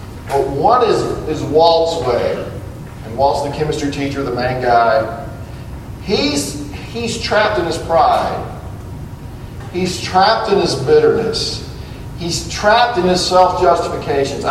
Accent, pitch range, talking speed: American, 135-205 Hz, 125 wpm